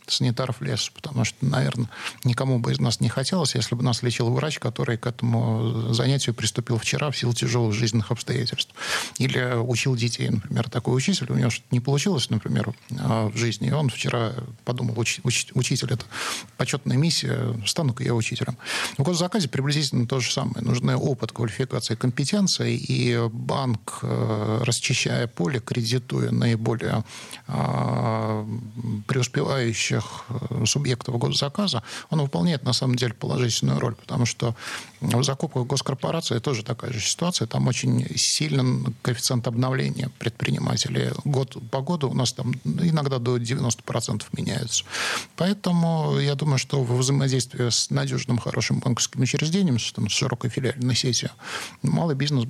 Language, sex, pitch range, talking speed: Russian, male, 120-140 Hz, 140 wpm